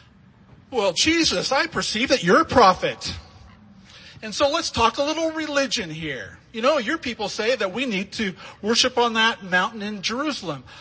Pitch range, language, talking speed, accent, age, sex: 125-185 Hz, English, 170 wpm, American, 40-59, male